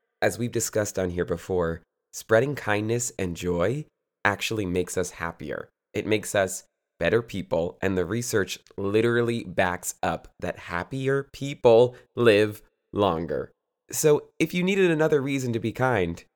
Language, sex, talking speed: English, male, 145 wpm